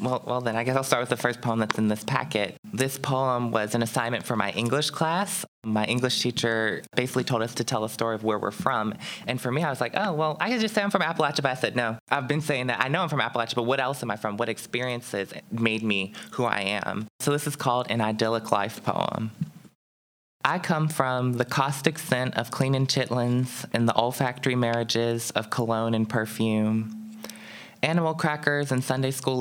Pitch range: 115-130 Hz